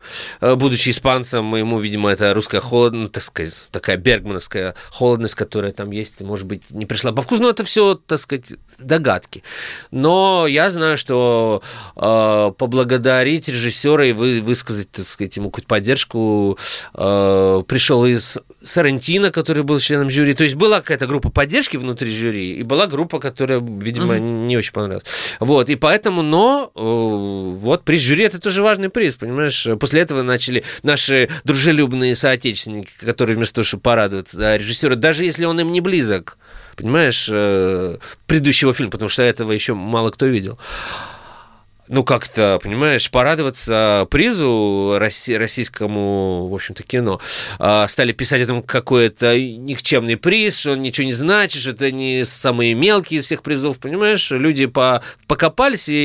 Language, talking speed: Russian, 155 wpm